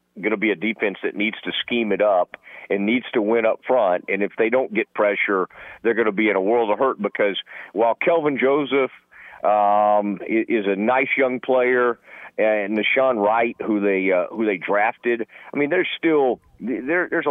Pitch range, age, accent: 105-135 Hz, 50-69, American